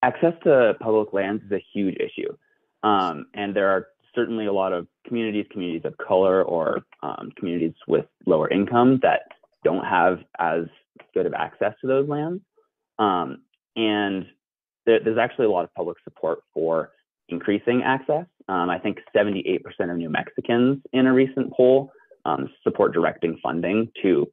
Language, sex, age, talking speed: English, male, 30-49, 160 wpm